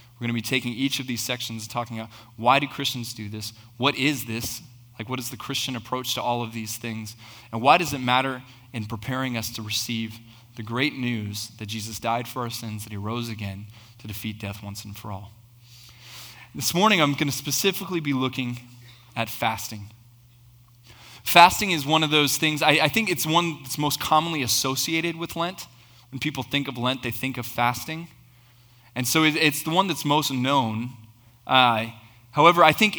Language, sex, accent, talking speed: English, male, American, 195 wpm